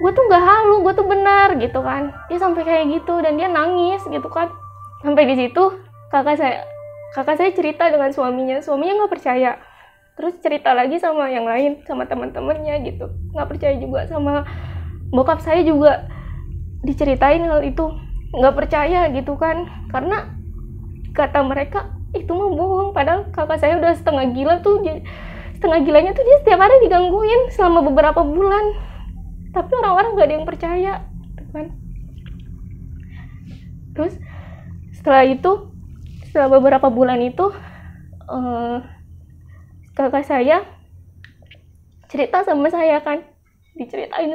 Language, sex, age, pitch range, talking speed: Indonesian, female, 20-39, 260-340 Hz, 135 wpm